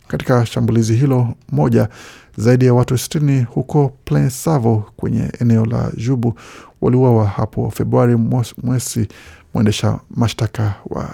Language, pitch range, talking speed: Swahili, 110-130 Hz, 120 wpm